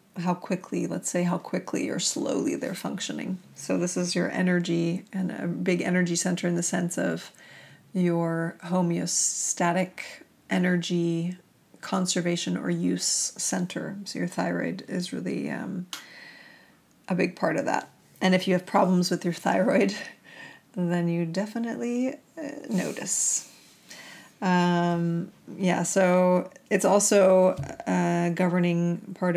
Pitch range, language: 170-190 Hz, English